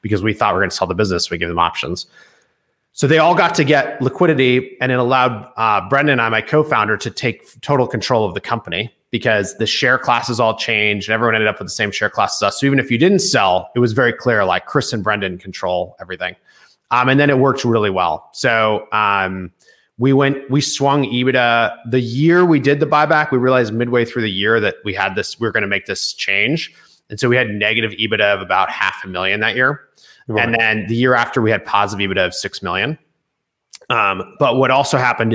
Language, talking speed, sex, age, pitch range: English, 235 wpm, male, 30-49, 110-140 Hz